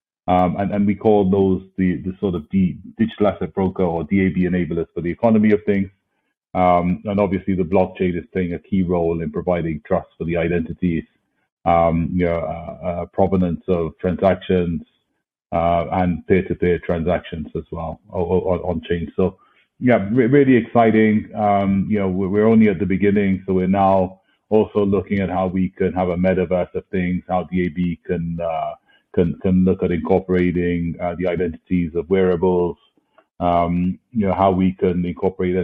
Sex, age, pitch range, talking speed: male, 30-49, 90-100 Hz, 175 wpm